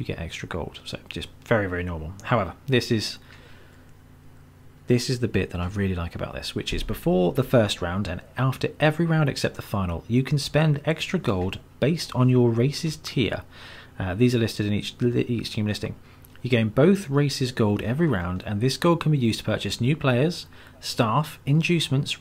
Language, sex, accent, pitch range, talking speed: English, male, British, 100-135 Hz, 195 wpm